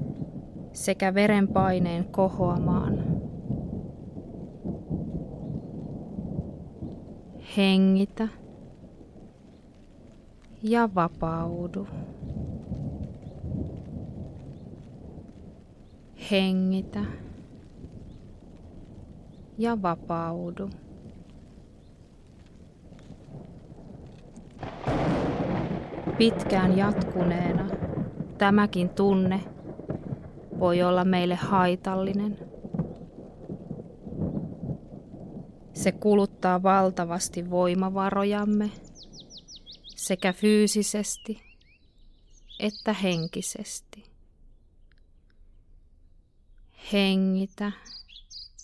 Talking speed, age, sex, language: 30 wpm, 20-39, female, Finnish